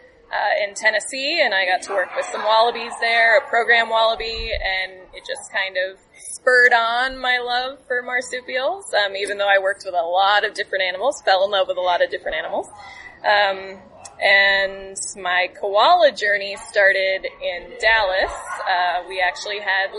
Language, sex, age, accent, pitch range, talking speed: English, female, 20-39, American, 195-275 Hz, 175 wpm